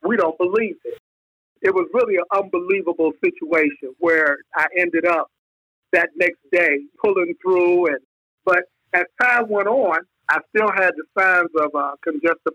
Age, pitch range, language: 50-69, 165-210 Hz, English